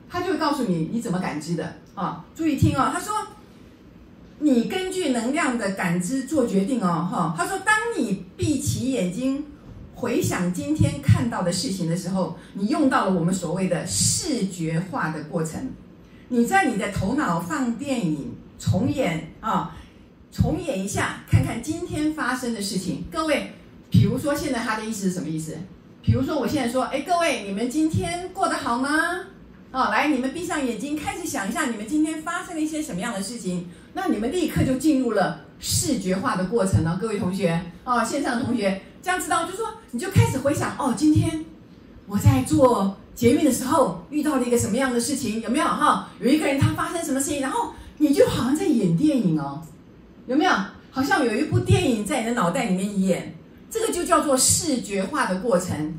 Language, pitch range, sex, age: Chinese, 185-300 Hz, female, 50-69